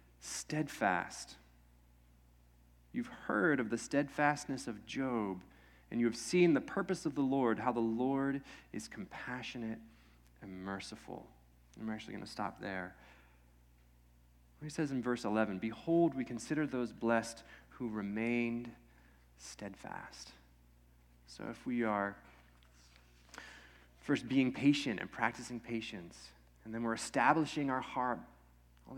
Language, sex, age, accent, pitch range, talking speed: English, male, 30-49, American, 95-150 Hz, 125 wpm